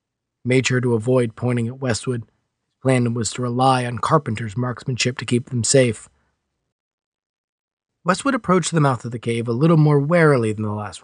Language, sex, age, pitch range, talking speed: English, male, 30-49, 110-130 Hz, 180 wpm